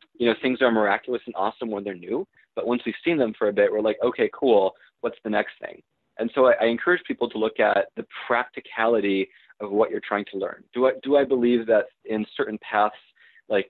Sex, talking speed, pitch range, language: male, 230 wpm, 105-120 Hz, English